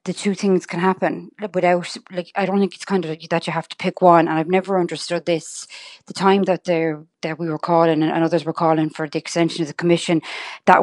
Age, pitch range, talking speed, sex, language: 30-49, 165-185 Hz, 245 wpm, female, English